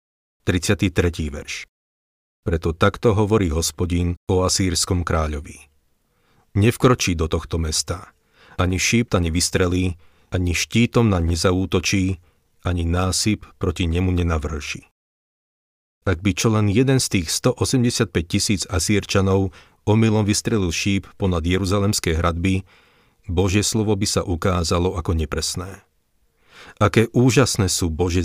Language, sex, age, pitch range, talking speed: Slovak, male, 40-59, 85-100 Hz, 115 wpm